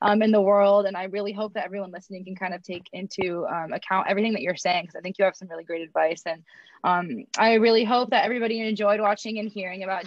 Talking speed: 255 wpm